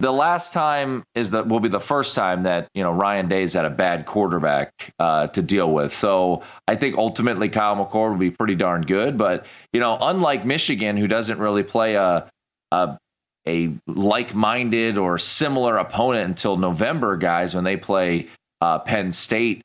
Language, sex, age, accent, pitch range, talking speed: English, male, 30-49, American, 95-115 Hz, 185 wpm